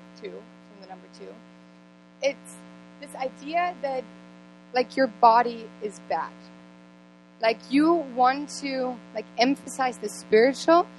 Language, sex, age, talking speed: English, female, 20-39, 115 wpm